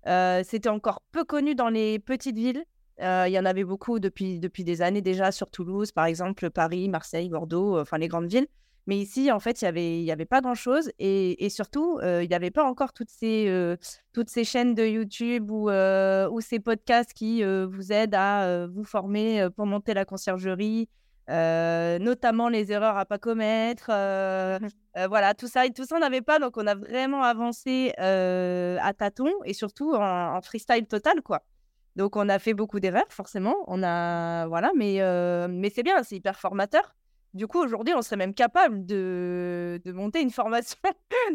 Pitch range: 185-235 Hz